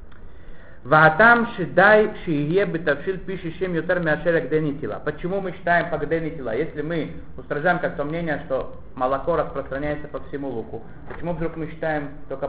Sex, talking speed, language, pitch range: male, 150 wpm, Russian, 120-180 Hz